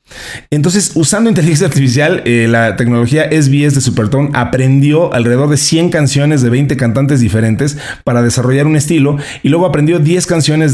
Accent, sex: Mexican, male